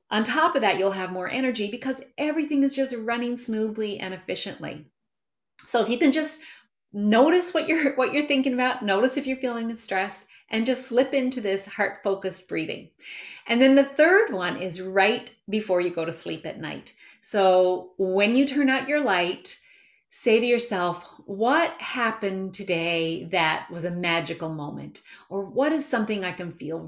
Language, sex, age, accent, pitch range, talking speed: English, female, 30-49, American, 180-255 Hz, 175 wpm